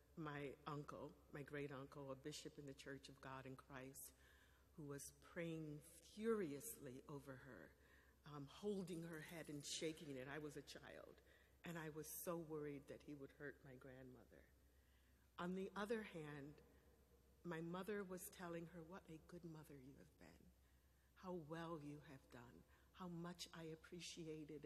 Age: 50-69